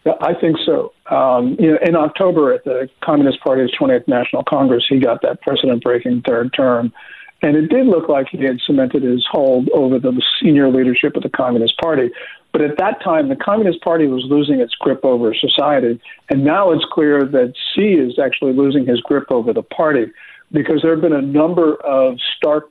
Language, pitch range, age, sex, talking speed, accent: English, 140-170 Hz, 50-69, male, 190 wpm, American